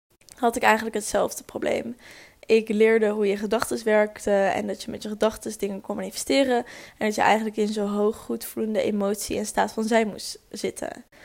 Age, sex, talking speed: 10-29, female, 185 wpm